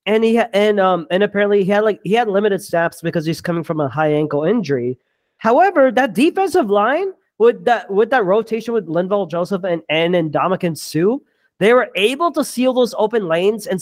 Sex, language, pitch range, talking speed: male, English, 165-240 Hz, 205 wpm